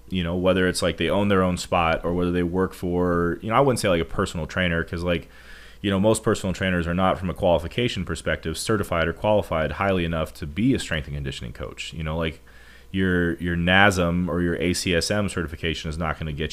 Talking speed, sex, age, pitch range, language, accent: 230 wpm, male, 30-49, 80-95 Hz, English, American